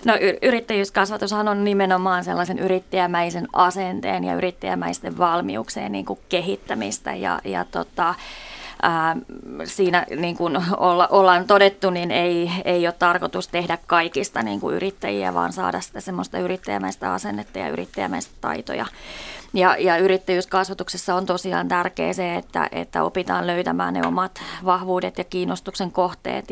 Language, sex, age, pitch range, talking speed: Finnish, female, 20-39, 170-190 Hz, 125 wpm